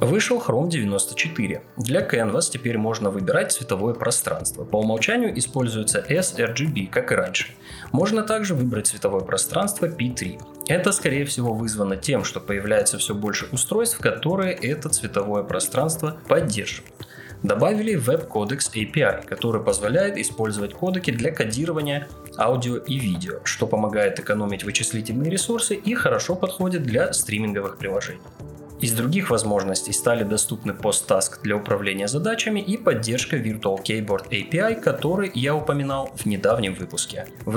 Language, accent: Russian, native